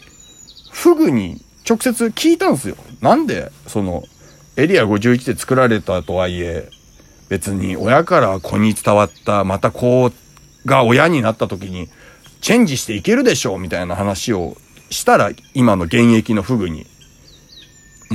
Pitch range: 95-135 Hz